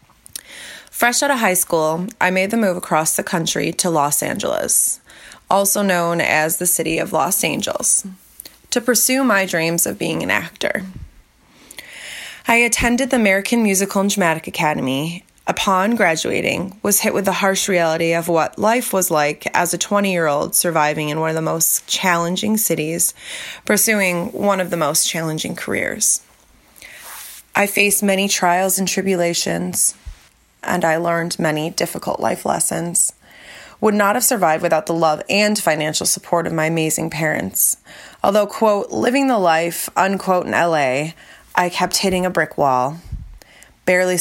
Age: 20-39